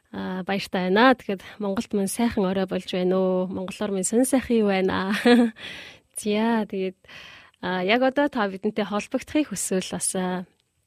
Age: 20-39